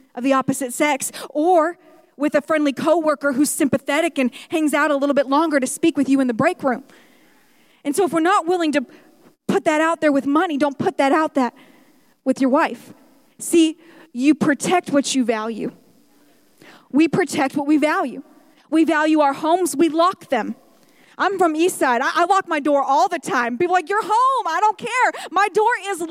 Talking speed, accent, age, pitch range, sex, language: 200 wpm, American, 40-59, 280-350 Hz, female, English